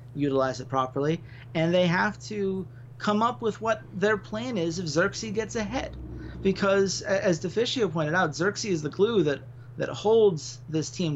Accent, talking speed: American, 170 wpm